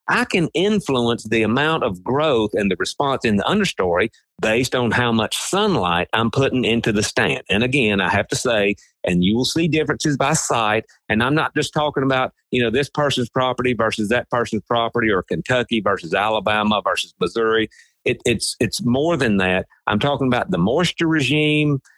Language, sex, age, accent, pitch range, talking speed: English, male, 50-69, American, 110-145 Hz, 190 wpm